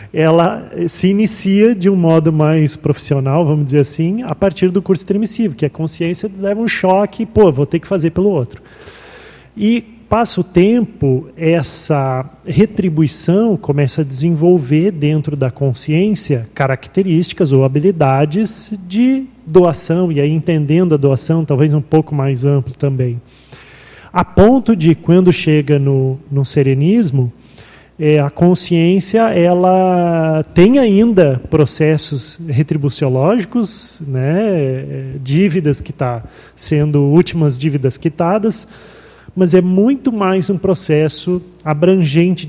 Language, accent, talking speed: Portuguese, Brazilian, 125 wpm